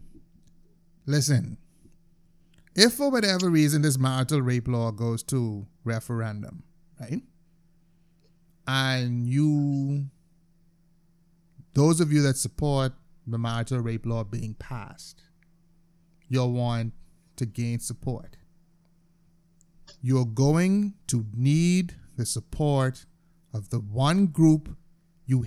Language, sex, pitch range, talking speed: English, male, 125-170 Hz, 100 wpm